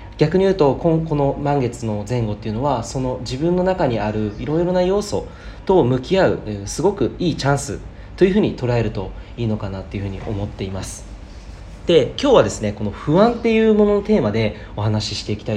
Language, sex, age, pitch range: Japanese, male, 40-59, 100-150 Hz